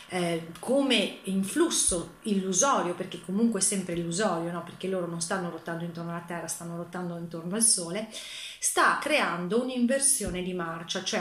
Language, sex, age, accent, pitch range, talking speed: Italian, female, 30-49, native, 175-225 Hz, 155 wpm